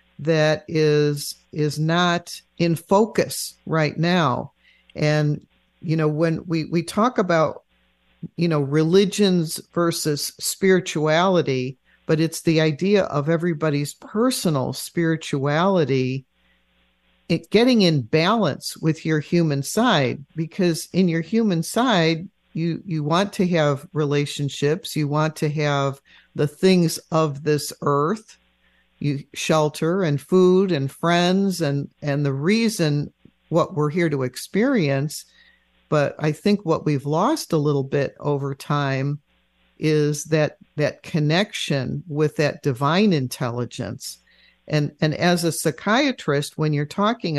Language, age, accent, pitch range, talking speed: English, 50-69, American, 145-175 Hz, 125 wpm